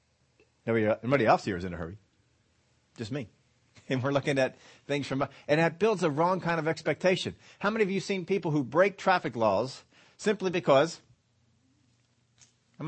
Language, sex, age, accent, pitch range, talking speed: English, male, 40-59, American, 125-160 Hz, 170 wpm